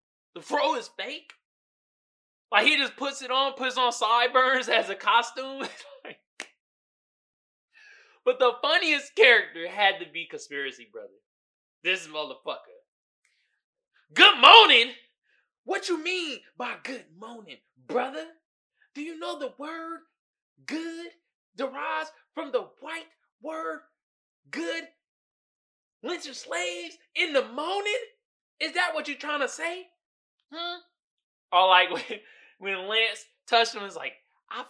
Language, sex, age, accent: English, male, 20-39, American